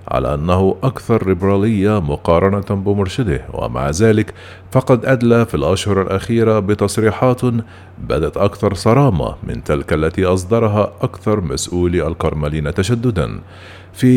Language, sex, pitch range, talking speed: Arabic, male, 95-115 Hz, 110 wpm